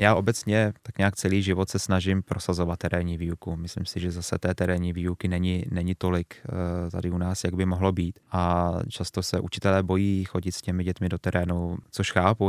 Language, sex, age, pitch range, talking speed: Czech, male, 20-39, 85-95 Hz, 195 wpm